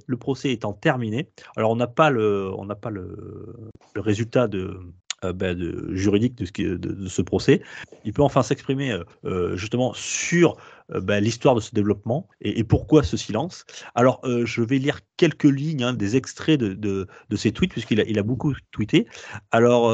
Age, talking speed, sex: 30-49, 160 wpm, male